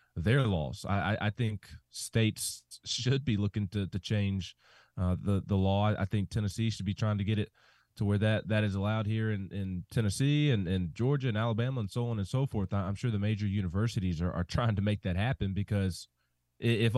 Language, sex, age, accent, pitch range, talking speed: English, male, 20-39, American, 100-130 Hz, 210 wpm